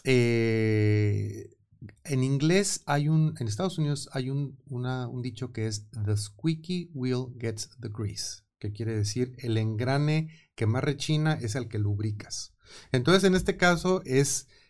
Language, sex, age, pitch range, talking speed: Malay, male, 30-49, 110-145 Hz, 155 wpm